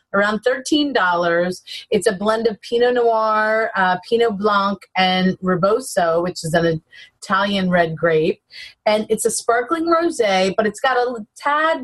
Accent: American